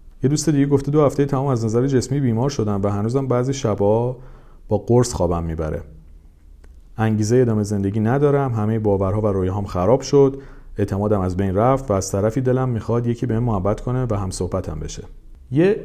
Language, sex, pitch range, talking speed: Persian, male, 95-130 Hz, 180 wpm